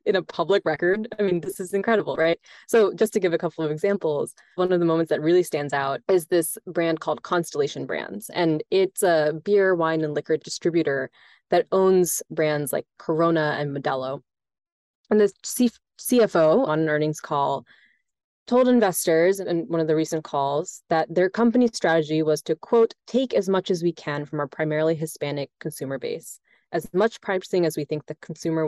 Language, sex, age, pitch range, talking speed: English, female, 20-39, 155-205 Hz, 190 wpm